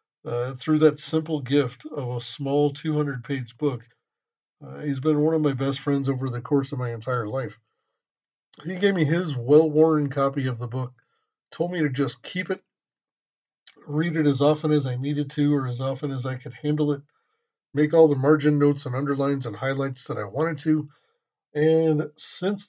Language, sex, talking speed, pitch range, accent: English, male, 190 wpm, 135-155 Hz, American